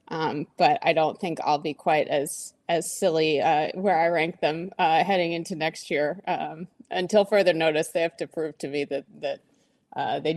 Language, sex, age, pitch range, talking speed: English, female, 20-39, 160-190 Hz, 205 wpm